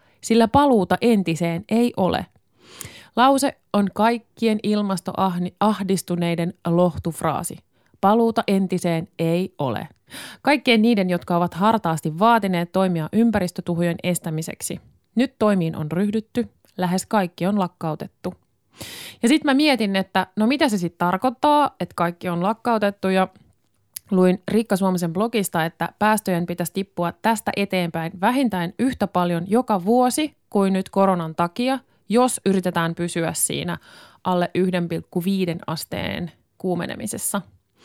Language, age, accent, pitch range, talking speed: Finnish, 20-39, native, 175-225 Hz, 115 wpm